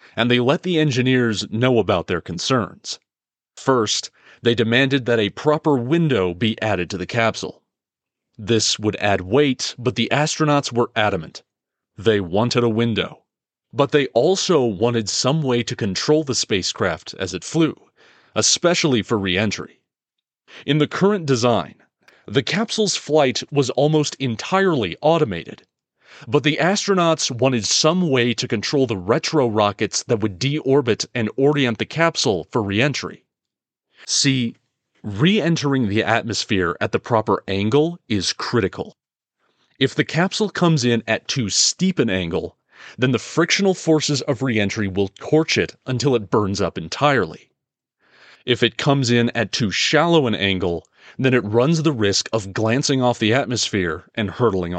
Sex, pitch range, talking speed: male, 110-150 Hz, 150 wpm